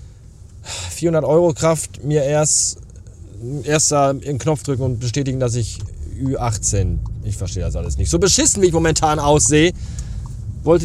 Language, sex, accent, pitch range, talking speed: German, male, German, 95-130 Hz, 150 wpm